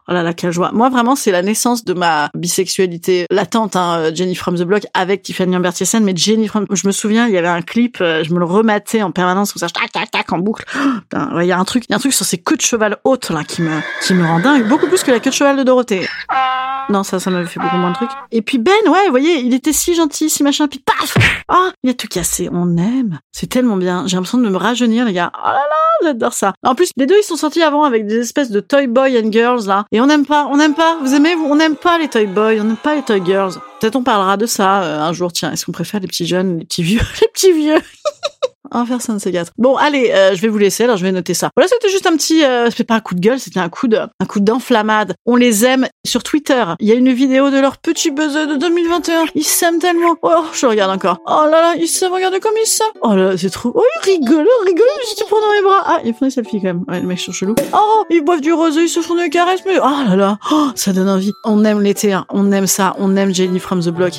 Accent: French